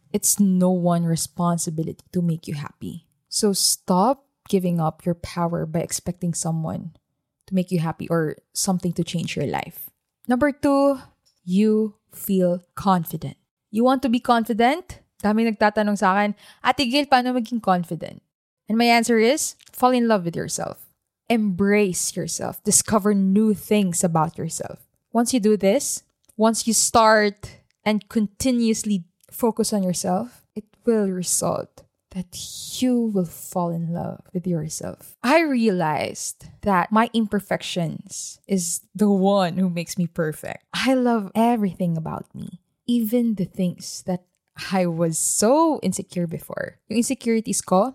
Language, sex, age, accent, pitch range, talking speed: English, female, 20-39, Filipino, 175-225 Hz, 140 wpm